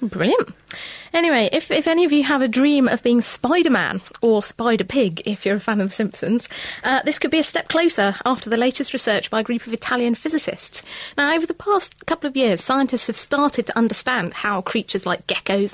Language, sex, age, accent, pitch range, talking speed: English, female, 30-49, British, 210-290 Hz, 210 wpm